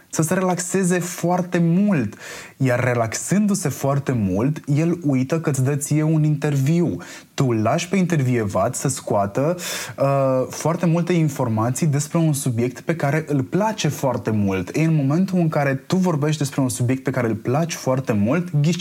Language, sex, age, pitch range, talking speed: Romanian, male, 20-39, 120-160 Hz, 165 wpm